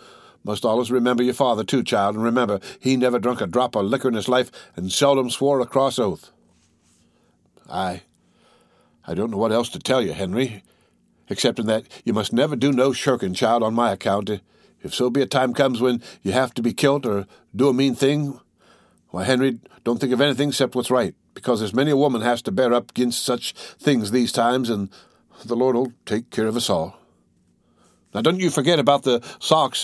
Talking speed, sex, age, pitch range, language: 205 wpm, male, 60-79, 100-130 Hz, English